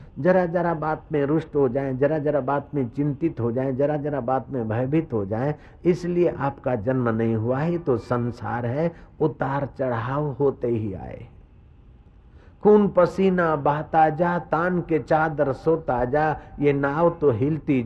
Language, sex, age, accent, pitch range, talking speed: Hindi, male, 50-69, native, 110-155 Hz, 160 wpm